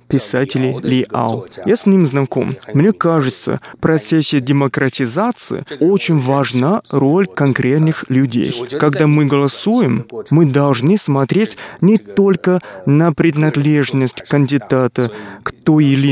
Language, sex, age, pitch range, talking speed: Russian, male, 20-39, 135-175 Hz, 110 wpm